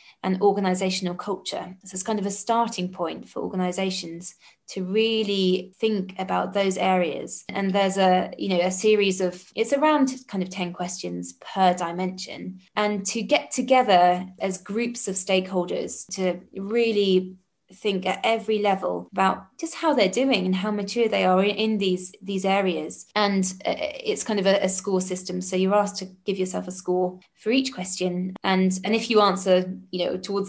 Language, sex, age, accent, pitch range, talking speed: English, female, 20-39, British, 185-205 Hz, 175 wpm